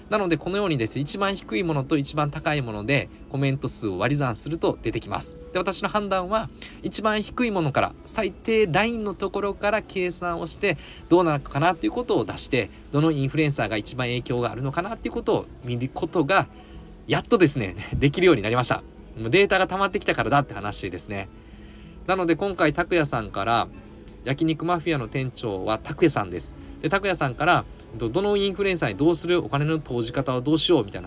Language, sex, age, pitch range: Japanese, male, 20-39, 115-180 Hz